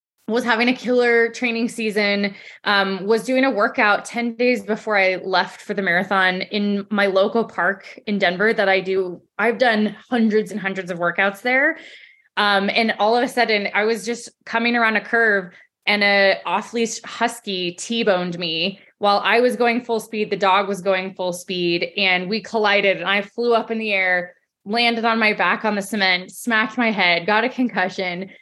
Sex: female